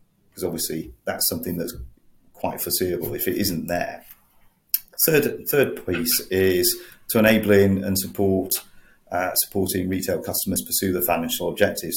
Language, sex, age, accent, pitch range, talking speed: English, male, 40-59, British, 90-110 Hz, 135 wpm